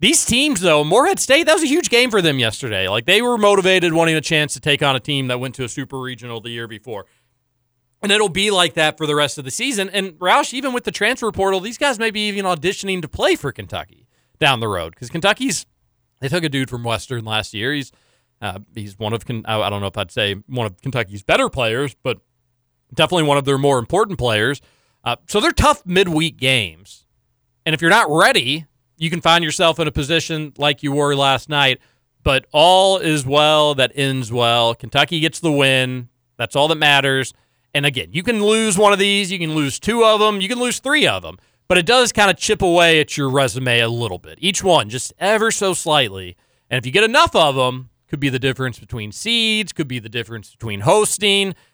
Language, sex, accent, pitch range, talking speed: English, male, American, 120-185 Hz, 225 wpm